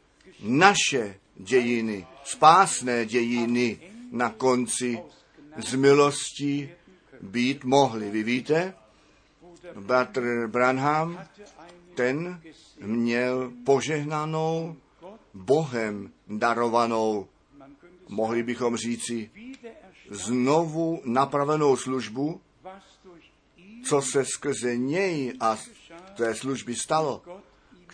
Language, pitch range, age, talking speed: Czech, 125-175 Hz, 50-69, 70 wpm